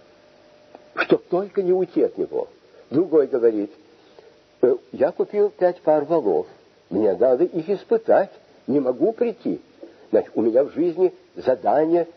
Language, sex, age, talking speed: Russian, male, 60-79, 130 wpm